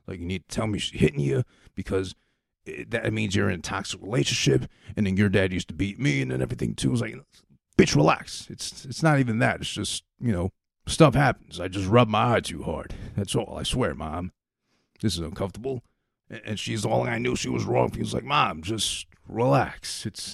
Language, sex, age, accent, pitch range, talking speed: English, male, 30-49, American, 80-105 Hz, 225 wpm